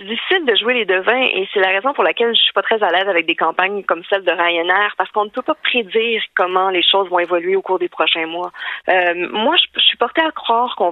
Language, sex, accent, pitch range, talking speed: French, female, Canadian, 180-240 Hz, 275 wpm